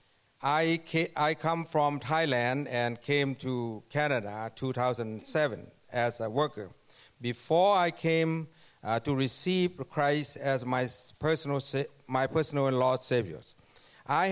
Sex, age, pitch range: male, 60-79, 120-150 Hz